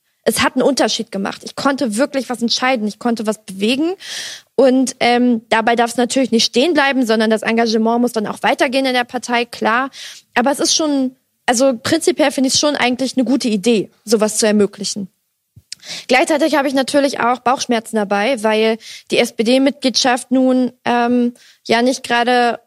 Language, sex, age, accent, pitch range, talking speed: German, female, 20-39, German, 220-260 Hz, 175 wpm